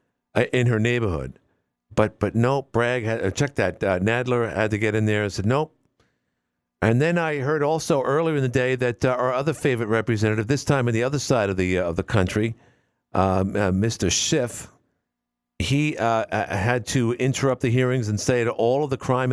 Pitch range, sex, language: 85-125 Hz, male, English